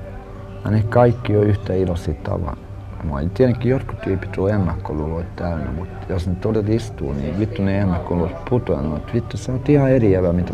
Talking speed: 160 wpm